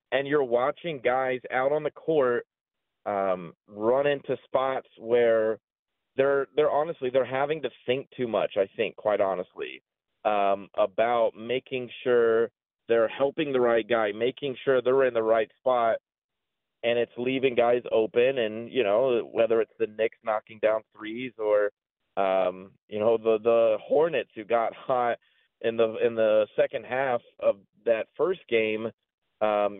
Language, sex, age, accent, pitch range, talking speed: English, male, 30-49, American, 115-160 Hz, 155 wpm